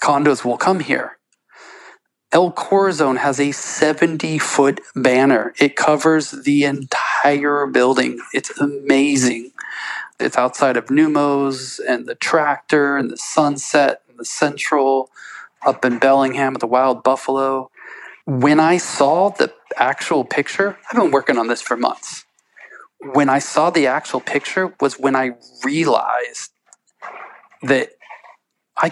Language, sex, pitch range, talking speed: English, male, 130-150 Hz, 130 wpm